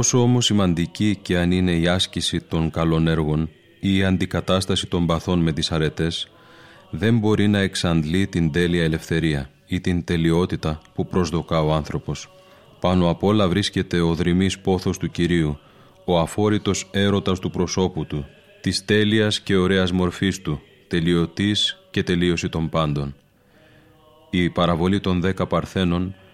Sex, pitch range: male, 85-95 Hz